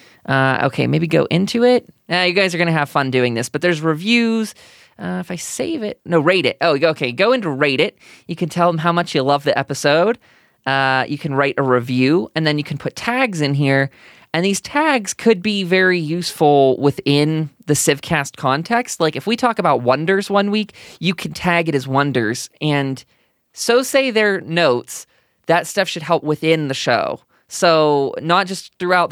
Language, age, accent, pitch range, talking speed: English, 20-39, American, 140-180 Hz, 200 wpm